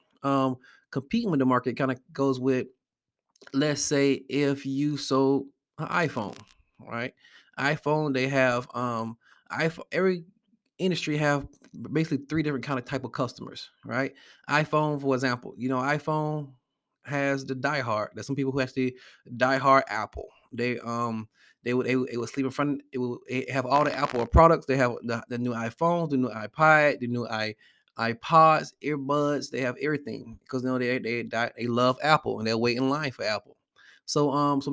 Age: 20-39